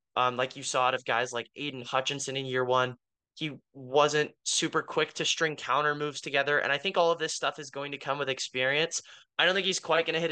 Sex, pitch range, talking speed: male, 130-155 Hz, 250 wpm